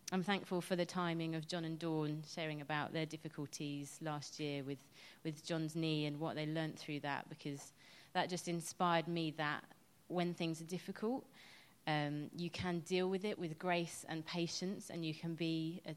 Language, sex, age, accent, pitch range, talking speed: English, female, 30-49, British, 155-175 Hz, 190 wpm